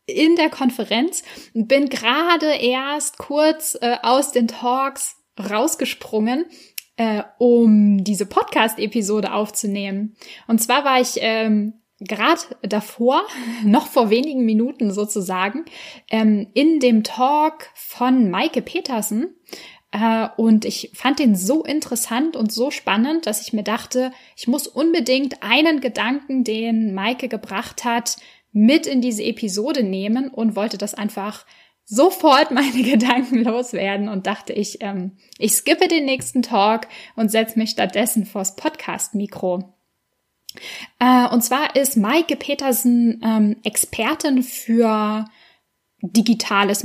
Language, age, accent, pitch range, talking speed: German, 10-29, German, 215-275 Hz, 125 wpm